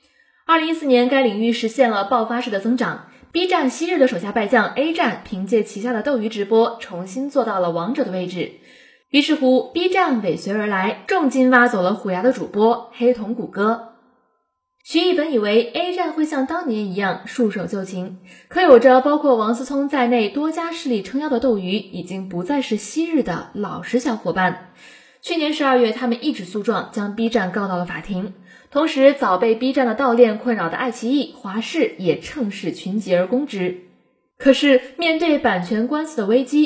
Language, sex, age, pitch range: Chinese, female, 10-29, 215-275 Hz